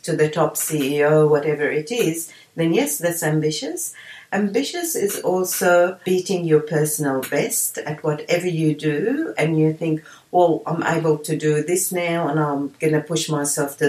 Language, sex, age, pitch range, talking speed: English, female, 60-79, 155-195 Hz, 170 wpm